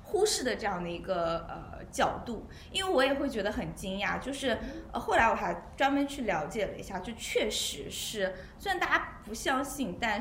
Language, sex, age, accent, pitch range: Chinese, female, 20-39, native, 195-275 Hz